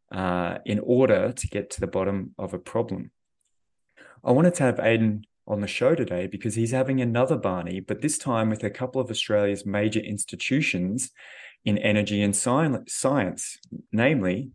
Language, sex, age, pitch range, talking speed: English, male, 20-39, 100-120 Hz, 165 wpm